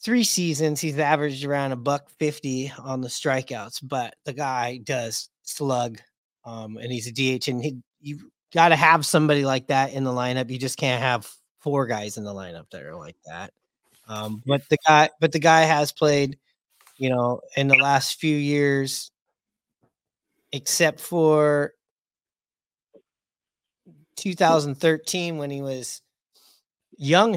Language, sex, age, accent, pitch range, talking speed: English, male, 30-49, American, 125-150 Hz, 150 wpm